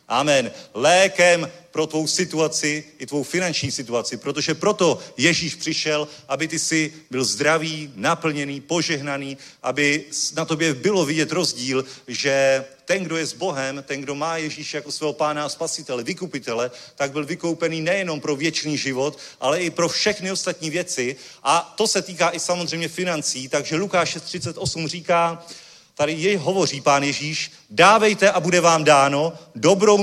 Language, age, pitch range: Czech, 40-59, 150-180 Hz